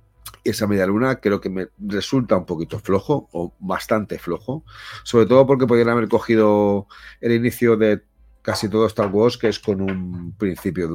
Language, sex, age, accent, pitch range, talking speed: Spanish, male, 40-59, Spanish, 95-115 Hz, 175 wpm